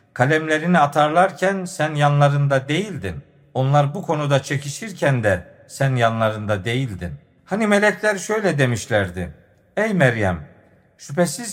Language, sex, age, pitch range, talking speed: Turkish, male, 50-69, 130-185 Hz, 105 wpm